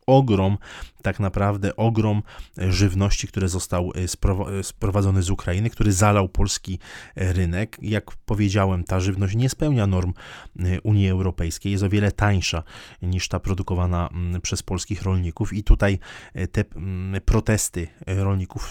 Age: 20-39